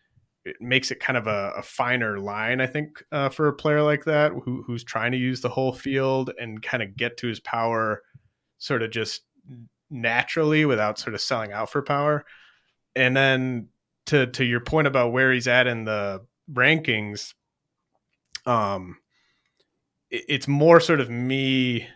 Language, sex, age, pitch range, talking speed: English, male, 30-49, 115-135 Hz, 170 wpm